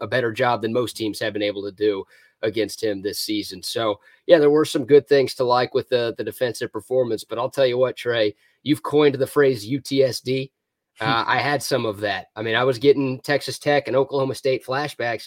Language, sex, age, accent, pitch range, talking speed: English, male, 30-49, American, 130-170 Hz, 225 wpm